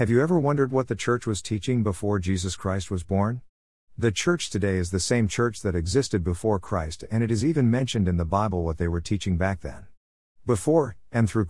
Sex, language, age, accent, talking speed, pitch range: male, English, 50-69, American, 220 wpm, 90-115 Hz